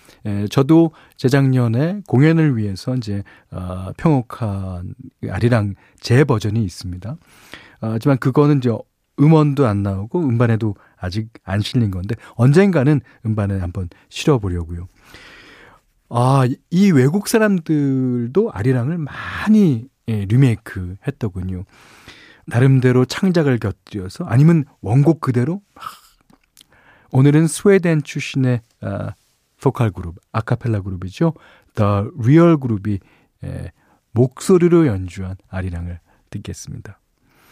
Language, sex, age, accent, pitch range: Korean, male, 40-59, native, 100-145 Hz